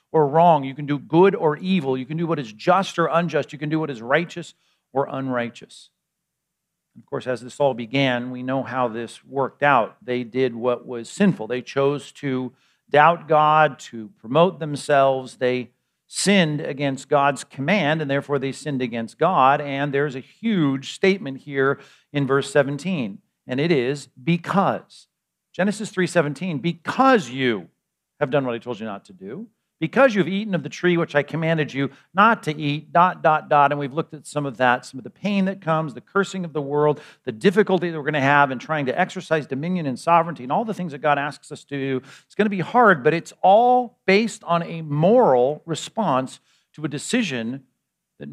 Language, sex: English, male